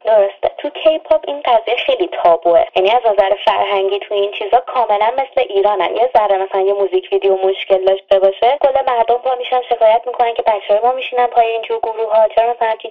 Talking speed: 190 wpm